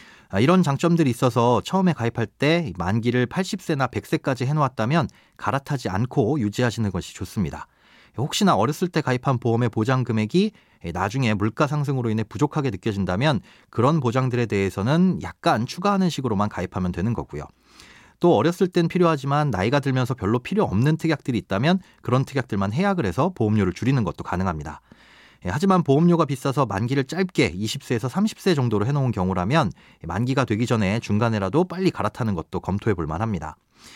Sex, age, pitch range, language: male, 30-49, 105-155 Hz, Korean